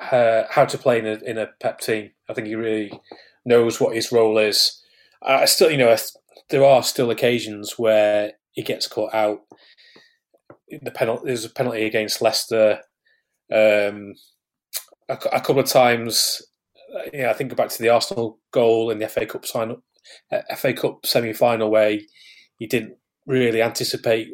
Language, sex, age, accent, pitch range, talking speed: English, male, 30-49, British, 110-120 Hz, 175 wpm